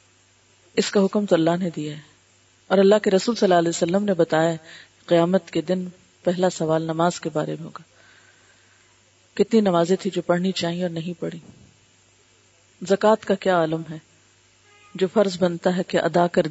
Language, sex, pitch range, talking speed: Urdu, female, 150-205 Hz, 180 wpm